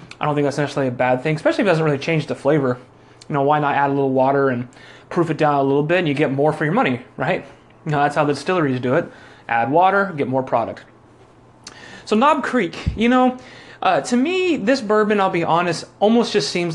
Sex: male